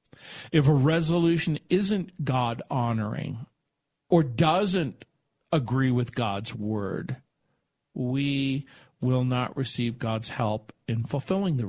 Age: 50-69